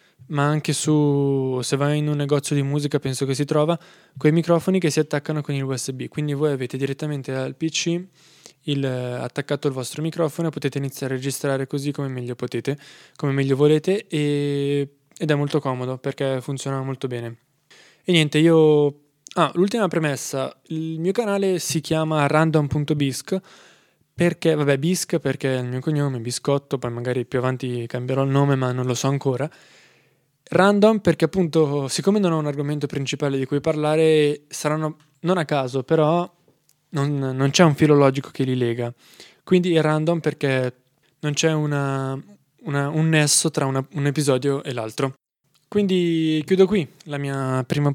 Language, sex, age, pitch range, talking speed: Italian, male, 20-39, 135-160 Hz, 165 wpm